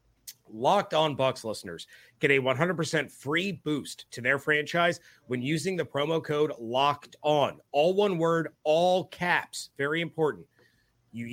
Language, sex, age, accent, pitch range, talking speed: English, male, 30-49, American, 130-160 Hz, 145 wpm